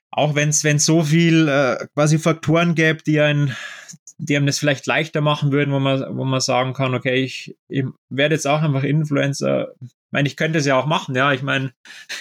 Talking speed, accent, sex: 215 wpm, German, male